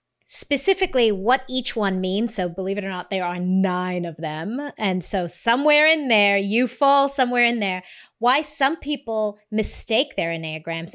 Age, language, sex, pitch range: 30-49, English, female, 180-240 Hz